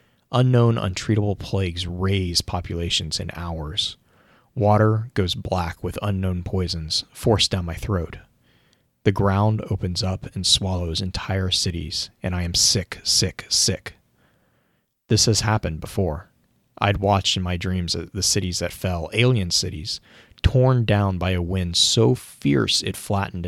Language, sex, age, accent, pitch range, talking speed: English, male, 30-49, American, 90-105 Hz, 140 wpm